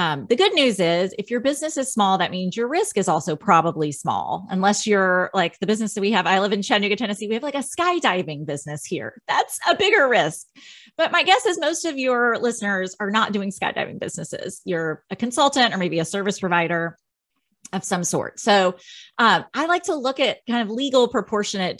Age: 30-49